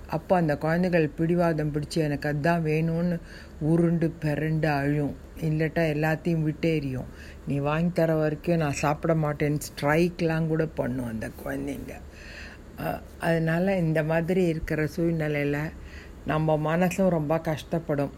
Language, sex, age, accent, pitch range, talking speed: Tamil, female, 60-79, native, 140-165 Hz, 115 wpm